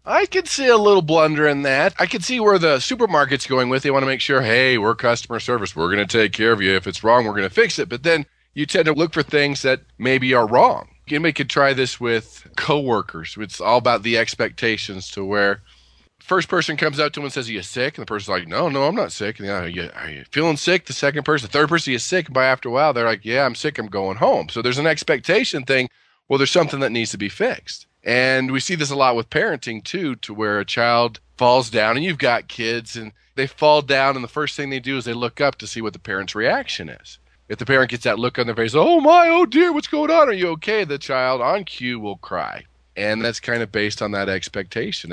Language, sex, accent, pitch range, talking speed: English, male, American, 115-150 Hz, 265 wpm